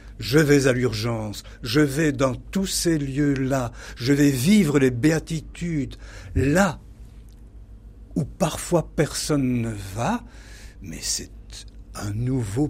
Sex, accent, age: male, French, 60-79